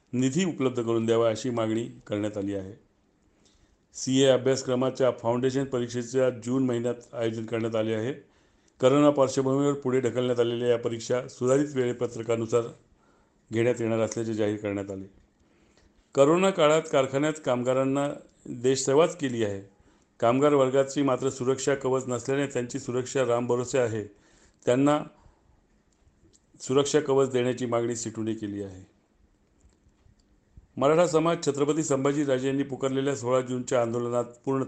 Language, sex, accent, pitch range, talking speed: Marathi, male, native, 115-135 Hz, 105 wpm